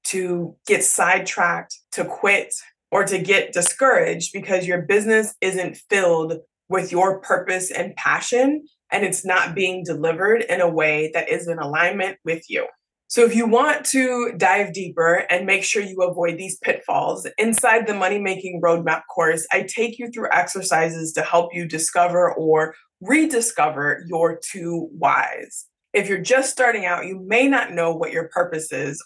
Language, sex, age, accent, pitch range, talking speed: English, female, 20-39, American, 170-225 Hz, 165 wpm